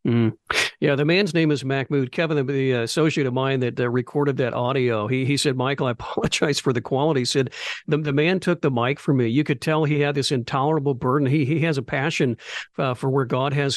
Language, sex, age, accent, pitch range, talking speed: English, male, 50-69, American, 135-170 Hz, 235 wpm